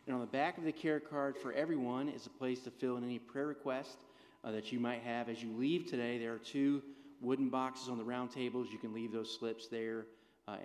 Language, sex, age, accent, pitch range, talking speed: English, male, 30-49, American, 120-150 Hz, 250 wpm